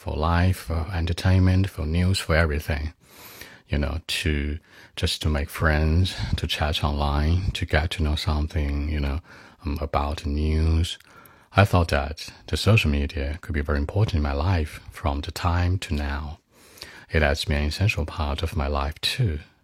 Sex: male